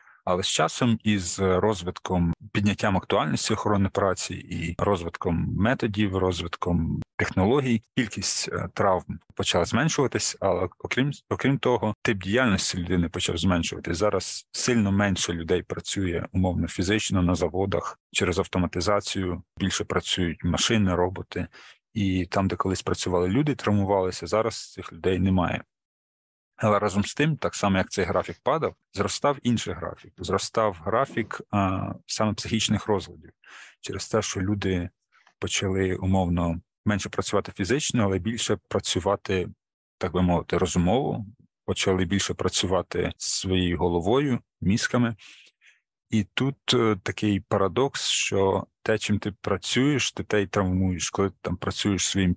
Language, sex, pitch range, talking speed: Ukrainian, male, 90-105 Hz, 125 wpm